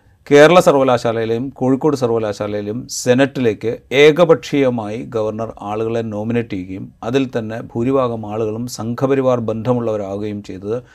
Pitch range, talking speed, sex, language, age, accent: 105-130 Hz, 95 wpm, male, Malayalam, 40-59, native